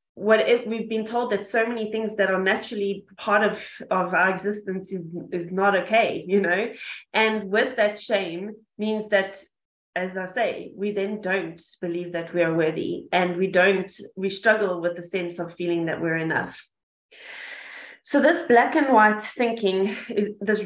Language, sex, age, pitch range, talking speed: English, female, 20-39, 180-215 Hz, 170 wpm